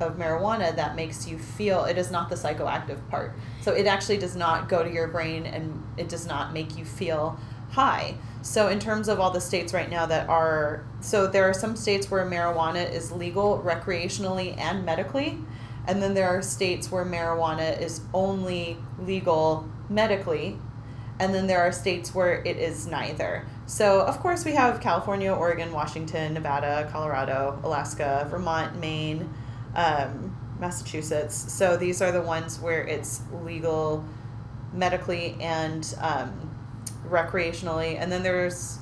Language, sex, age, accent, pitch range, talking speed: English, female, 30-49, American, 130-180 Hz, 160 wpm